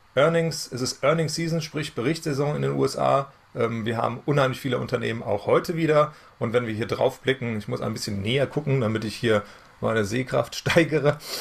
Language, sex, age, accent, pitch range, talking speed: German, male, 30-49, German, 105-130 Hz, 190 wpm